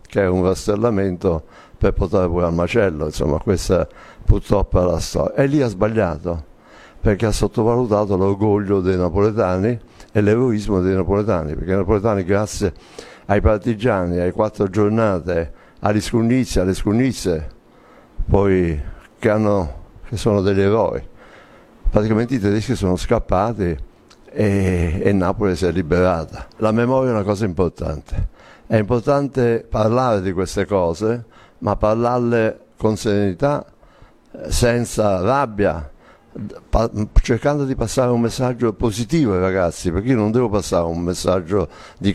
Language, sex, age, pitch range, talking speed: Italian, male, 60-79, 90-110 Hz, 130 wpm